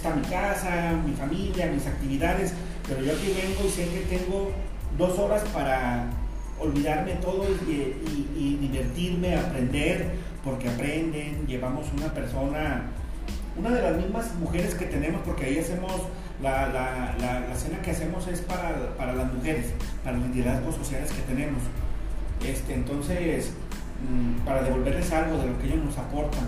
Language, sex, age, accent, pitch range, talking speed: Spanish, male, 40-59, Mexican, 130-180 Hz, 145 wpm